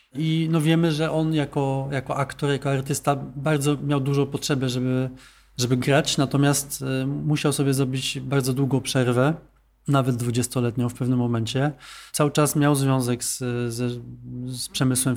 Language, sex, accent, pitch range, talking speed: Polish, male, native, 125-140 Hz, 145 wpm